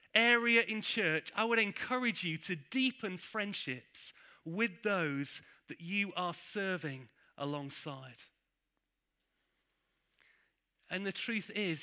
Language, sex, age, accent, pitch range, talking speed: English, male, 30-49, British, 170-230 Hz, 105 wpm